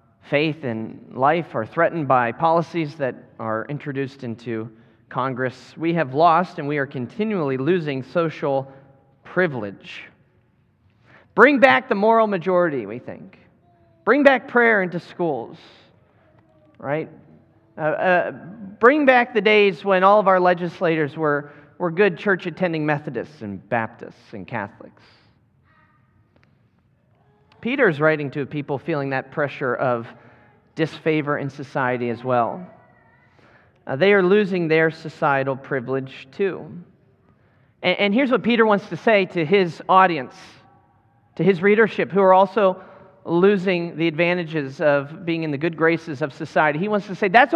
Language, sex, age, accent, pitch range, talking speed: English, male, 40-59, American, 135-195 Hz, 140 wpm